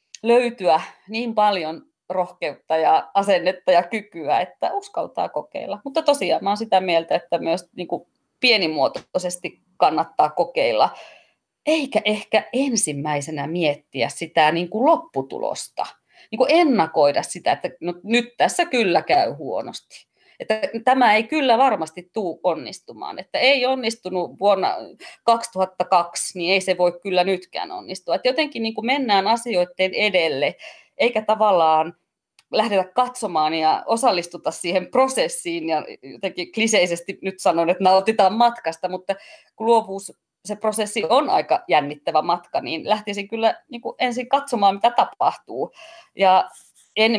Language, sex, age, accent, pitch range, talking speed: Finnish, female, 30-49, native, 180-250 Hz, 120 wpm